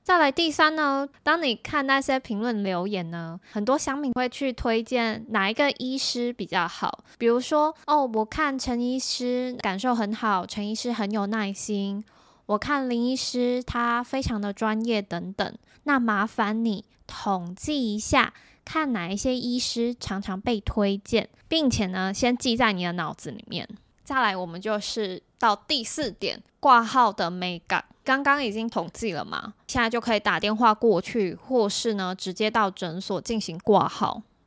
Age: 20-39